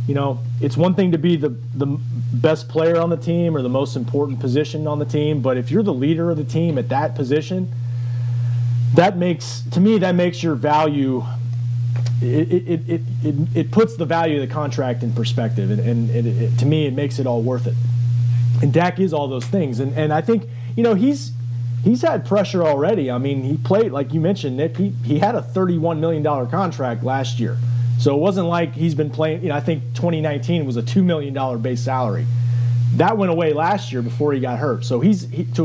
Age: 30-49